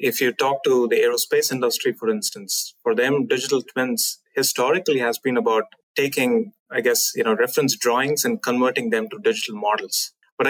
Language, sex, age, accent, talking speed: English, male, 30-49, Indian, 175 wpm